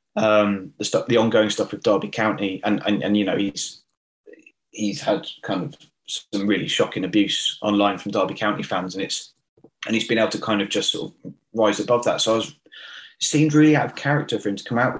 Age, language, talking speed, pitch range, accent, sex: 20-39, English, 220 wpm, 105-140 Hz, British, male